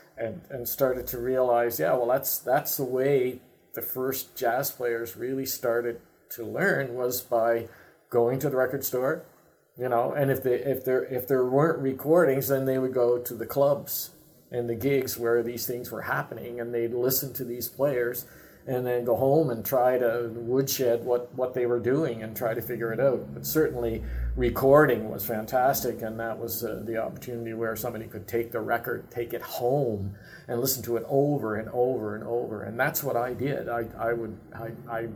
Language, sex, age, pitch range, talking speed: English, male, 50-69, 115-130 Hz, 195 wpm